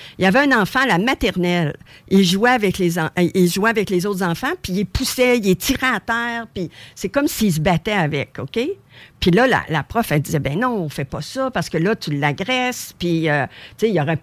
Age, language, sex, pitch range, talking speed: 50-69, French, female, 160-220 Hz, 240 wpm